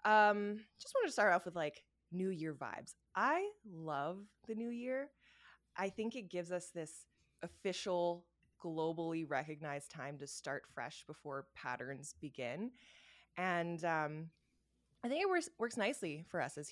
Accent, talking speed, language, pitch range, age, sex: American, 155 wpm, English, 150-190 Hz, 20-39, female